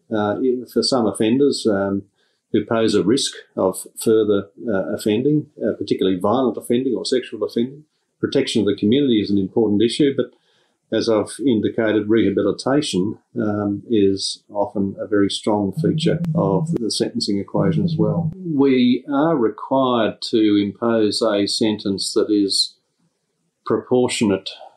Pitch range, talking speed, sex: 95-115 Hz, 135 wpm, male